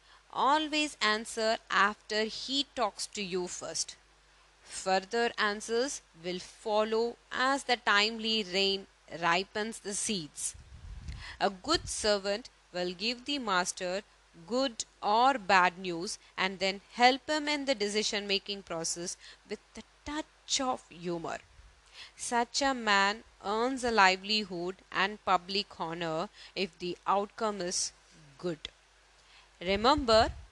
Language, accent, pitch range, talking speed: Tamil, native, 175-225 Hz, 115 wpm